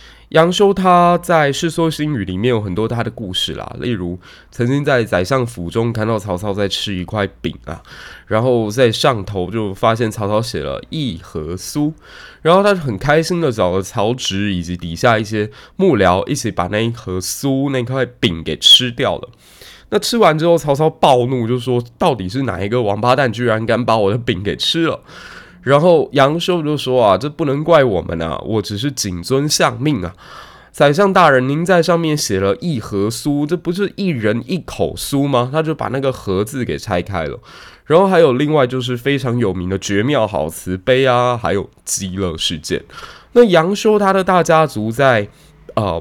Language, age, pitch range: Chinese, 20-39, 100-150 Hz